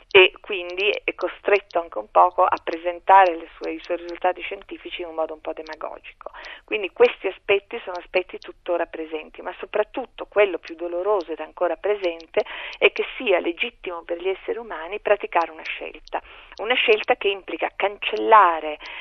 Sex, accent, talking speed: female, native, 165 wpm